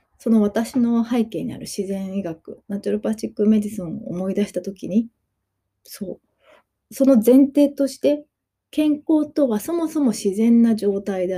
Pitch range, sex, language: 190-250 Hz, female, Japanese